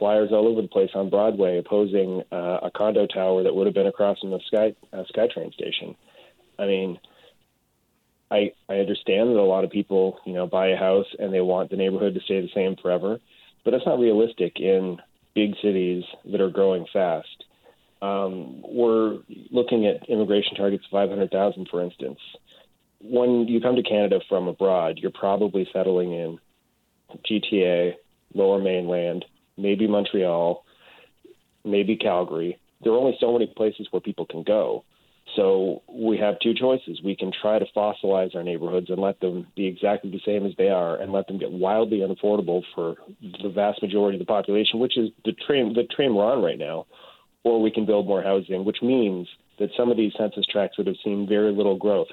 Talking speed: 185 wpm